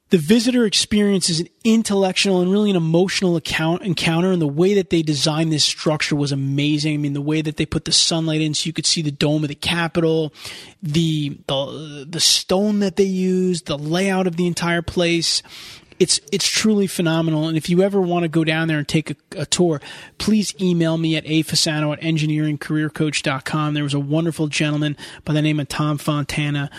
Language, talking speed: English, 200 wpm